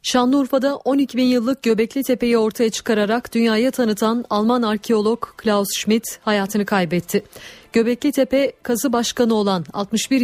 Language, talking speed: Turkish, 130 wpm